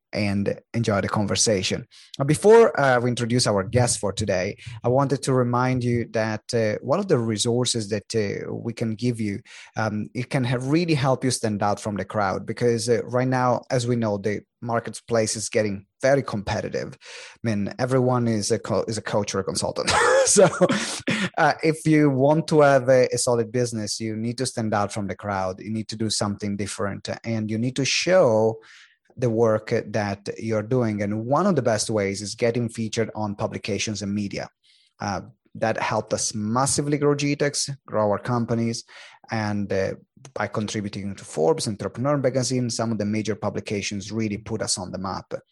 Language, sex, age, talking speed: English, male, 30-49, 185 wpm